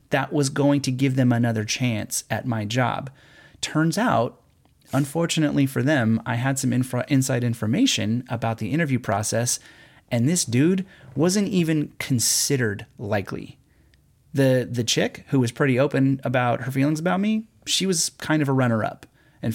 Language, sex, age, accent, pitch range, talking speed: English, male, 30-49, American, 110-135 Hz, 165 wpm